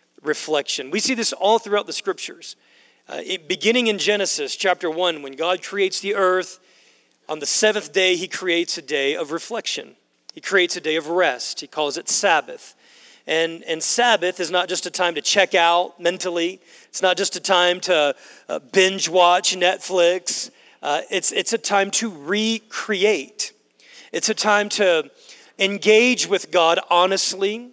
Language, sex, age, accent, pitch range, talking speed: English, male, 40-59, American, 175-215 Hz, 165 wpm